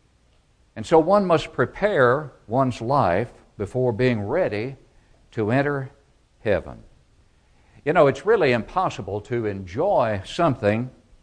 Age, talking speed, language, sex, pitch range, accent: 60-79, 110 wpm, English, male, 110-145 Hz, American